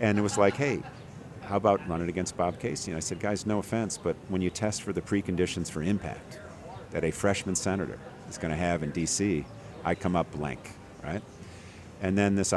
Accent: American